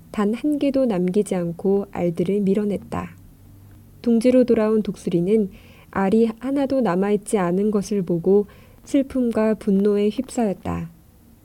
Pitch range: 180-225 Hz